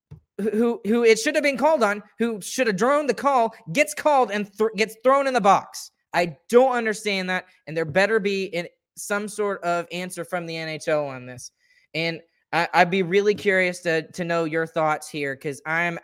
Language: English